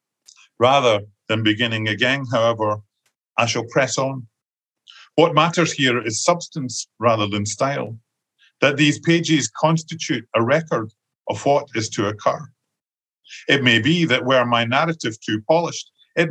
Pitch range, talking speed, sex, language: 115-155 Hz, 140 wpm, male, English